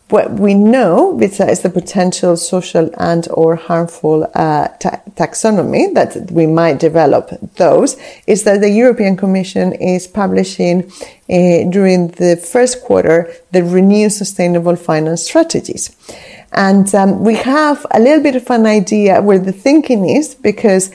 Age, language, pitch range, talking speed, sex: 30-49, English, 180-210 Hz, 140 wpm, female